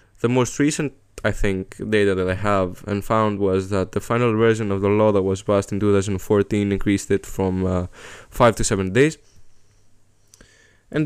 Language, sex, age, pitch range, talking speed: English, male, 10-29, 100-115 Hz, 180 wpm